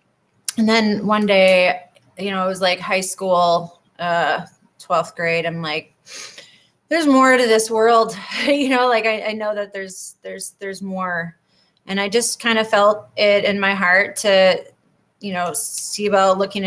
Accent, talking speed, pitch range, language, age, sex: American, 175 wpm, 170-195 Hz, English, 20-39, female